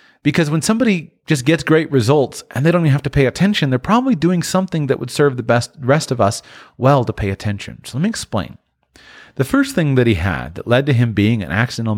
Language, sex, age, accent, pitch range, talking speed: English, male, 30-49, American, 115-155 Hz, 240 wpm